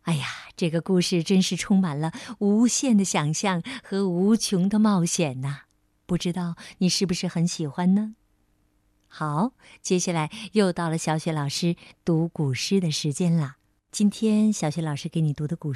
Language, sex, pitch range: Chinese, female, 125-200 Hz